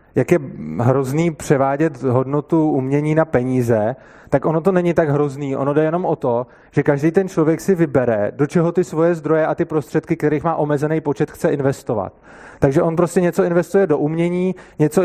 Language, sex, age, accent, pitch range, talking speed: Czech, male, 20-39, native, 135-165 Hz, 185 wpm